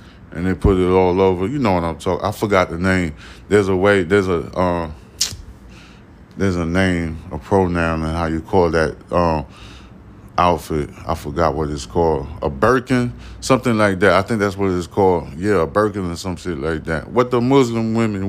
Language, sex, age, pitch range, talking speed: English, male, 20-39, 85-105 Hz, 200 wpm